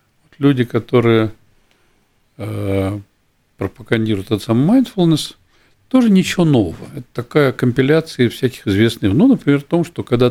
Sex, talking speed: male, 120 wpm